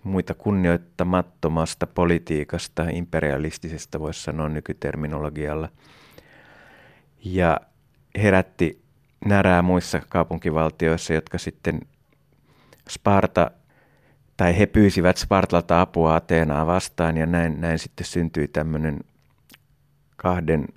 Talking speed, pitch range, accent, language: 85 wpm, 80-90 Hz, native, Finnish